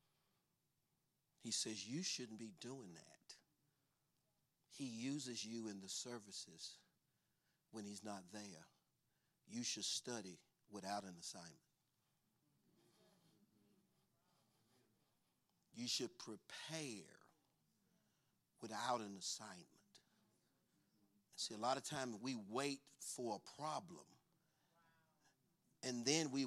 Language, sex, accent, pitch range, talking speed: English, male, American, 105-140 Hz, 95 wpm